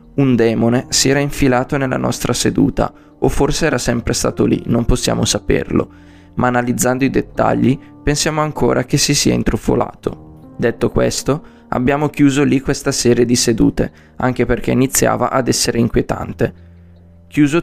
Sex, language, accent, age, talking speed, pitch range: male, Italian, native, 20-39, 145 wpm, 115-140 Hz